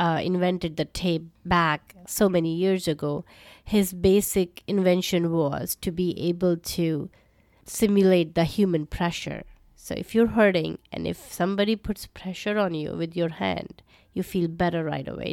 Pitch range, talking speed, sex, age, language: 165-195 Hz, 155 wpm, female, 30-49, English